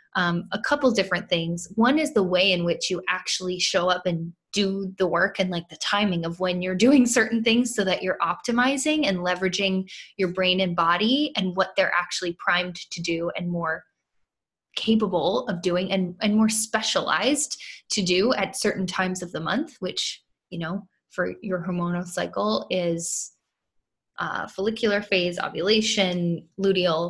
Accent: American